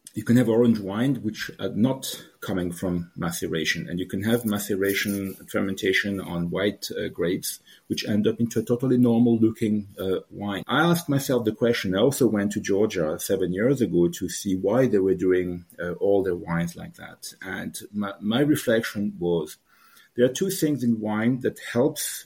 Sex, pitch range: male, 95-120 Hz